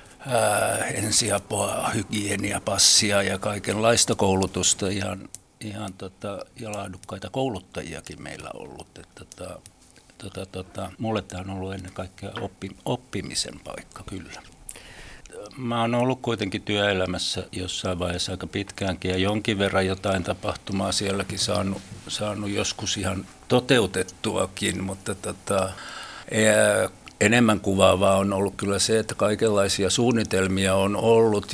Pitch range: 95-105 Hz